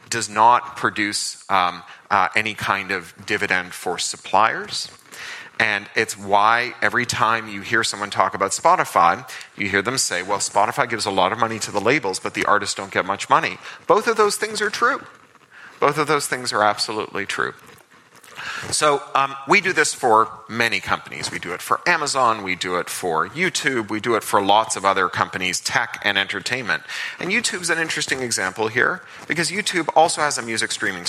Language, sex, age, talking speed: German, male, 30-49, 190 wpm